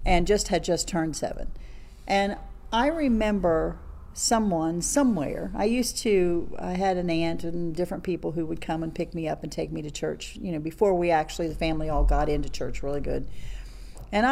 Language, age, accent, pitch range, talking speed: English, 40-59, American, 160-220 Hz, 195 wpm